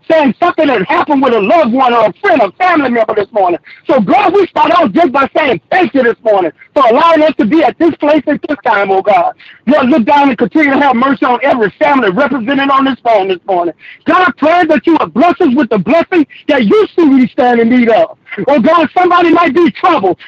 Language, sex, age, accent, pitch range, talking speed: English, male, 50-69, American, 260-350 Hz, 245 wpm